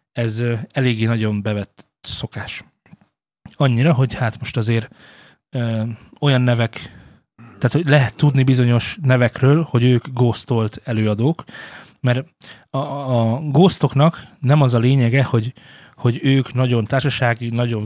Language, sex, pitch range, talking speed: Hungarian, male, 115-150 Hz, 125 wpm